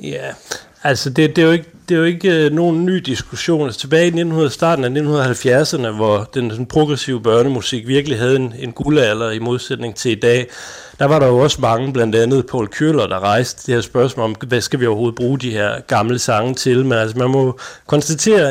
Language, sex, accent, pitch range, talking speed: Danish, male, native, 115-150 Hz, 215 wpm